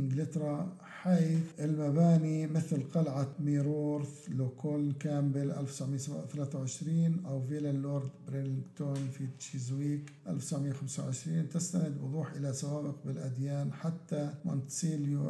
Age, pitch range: 50-69, 140-155 Hz